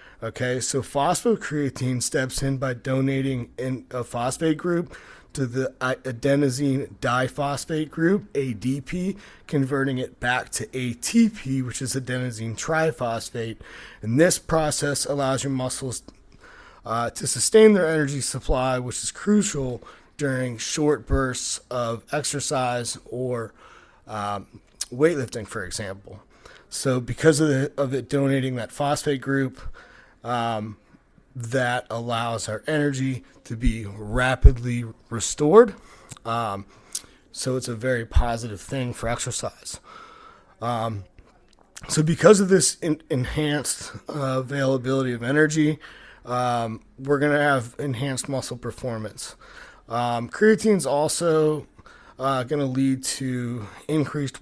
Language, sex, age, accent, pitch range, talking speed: English, male, 30-49, American, 120-145 Hz, 115 wpm